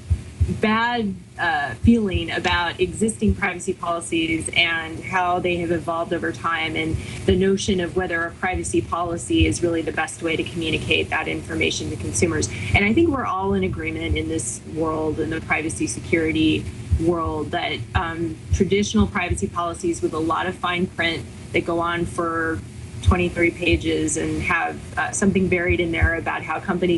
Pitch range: 165-185 Hz